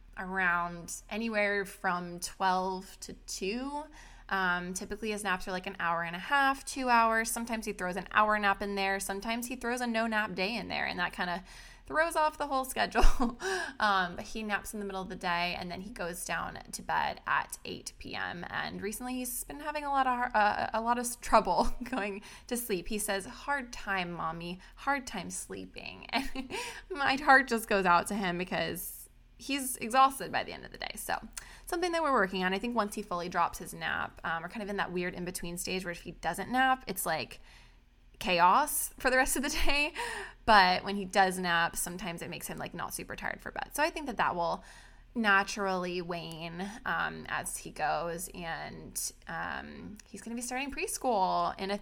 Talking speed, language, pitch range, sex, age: 210 wpm, English, 180-245 Hz, female, 20-39